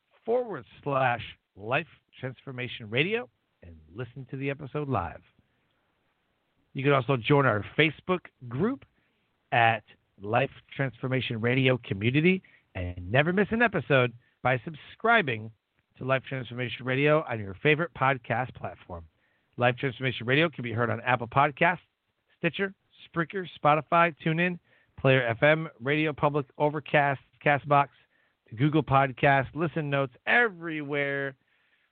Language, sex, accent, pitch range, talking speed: English, male, American, 115-150 Hz, 120 wpm